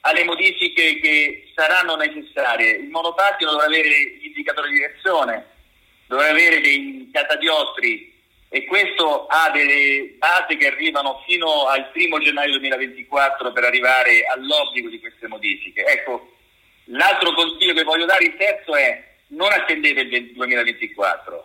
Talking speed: 130 wpm